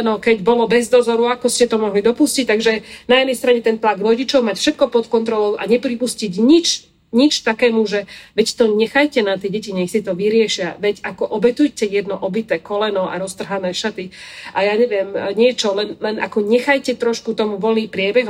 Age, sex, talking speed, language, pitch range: 40-59, female, 190 wpm, Slovak, 210-250 Hz